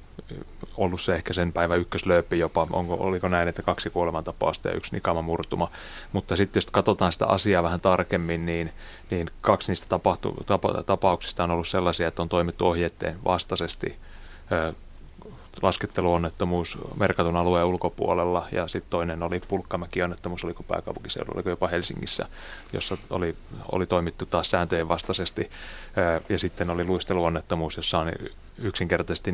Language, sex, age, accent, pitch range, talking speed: Finnish, male, 30-49, native, 85-95 Hz, 135 wpm